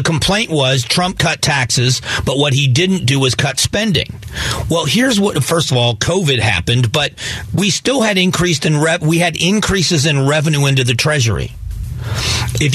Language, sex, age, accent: English, male, 40-59, American